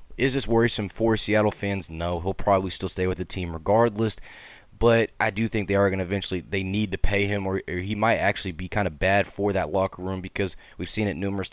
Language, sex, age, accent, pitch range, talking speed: English, male, 20-39, American, 90-105 Hz, 245 wpm